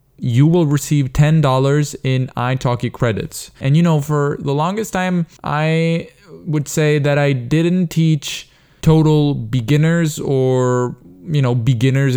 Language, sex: Italian, male